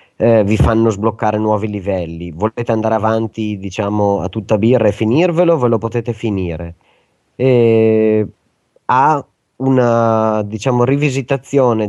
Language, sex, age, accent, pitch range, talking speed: Italian, male, 30-49, native, 100-115 Hz, 120 wpm